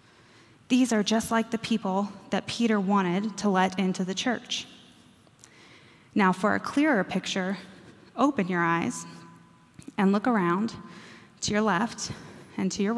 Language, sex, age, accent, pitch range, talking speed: English, female, 20-39, American, 190-225 Hz, 145 wpm